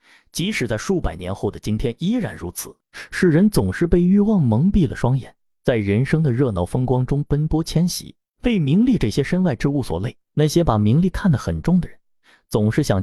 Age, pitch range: 30-49, 115-185 Hz